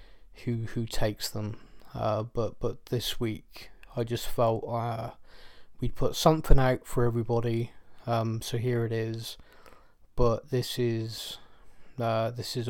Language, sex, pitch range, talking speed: English, male, 115-125 Hz, 140 wpm